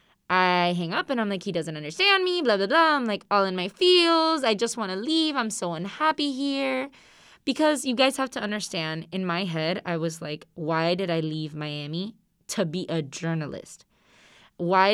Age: 20-39